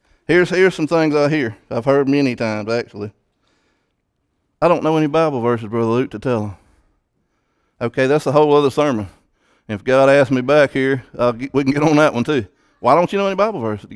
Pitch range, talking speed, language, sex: 125-170 Hz, 220 wpm, English, male